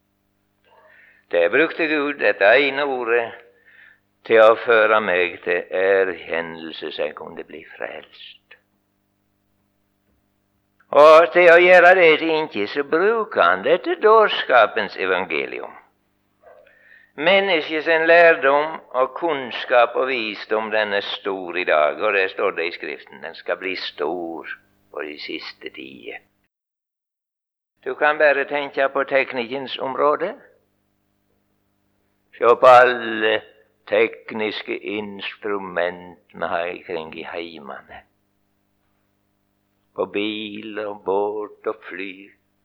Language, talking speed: English, 105 wpm